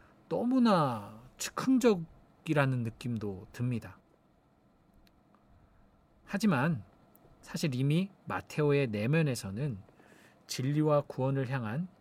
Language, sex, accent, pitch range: Korean, male, native, 105-155 Hz